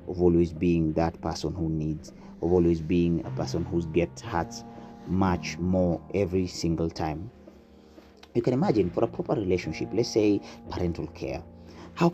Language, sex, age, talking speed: English, male, 30-49, 160 wpm